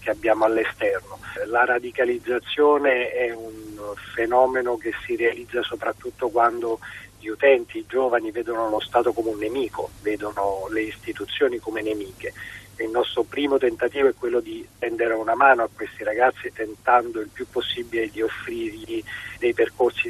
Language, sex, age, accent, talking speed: Italian, male, 40-59, native, 145 wpm